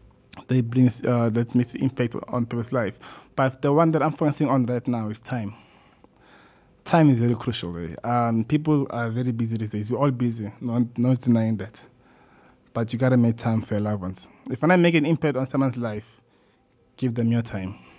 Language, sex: English, male